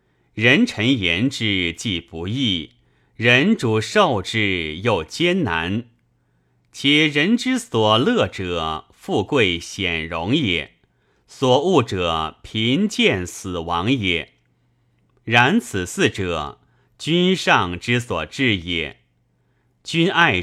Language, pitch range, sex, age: Chinese, 85-130 Hz, male, 30-49